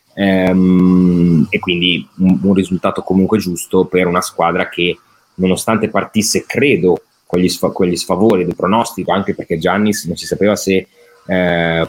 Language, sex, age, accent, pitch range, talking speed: Italian, male, 30-49, native, 85-95 Hz, 130 wpm